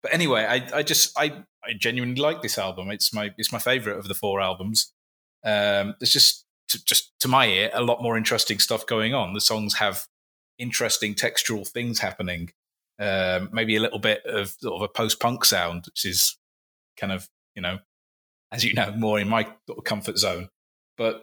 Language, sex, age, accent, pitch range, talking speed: English, male, 20-39, British, 100-120 Hz, 200 wpm